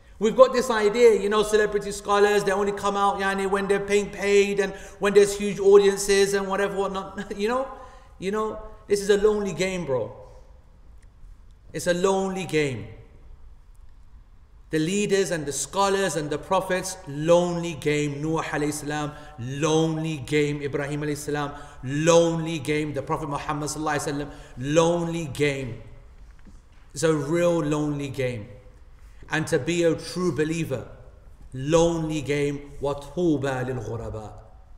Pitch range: 120-175 Hz